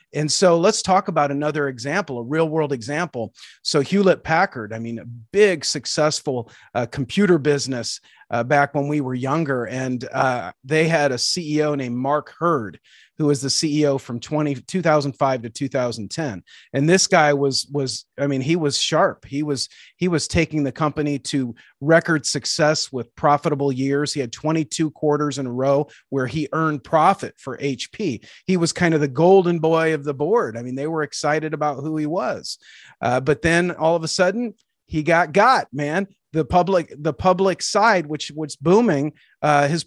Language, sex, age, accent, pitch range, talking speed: English, male, 30-49, American, 130-160 Hz, 190 wpm